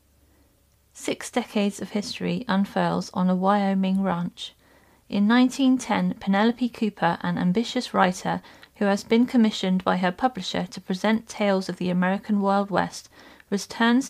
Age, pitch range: 30-49, 185-230 Hz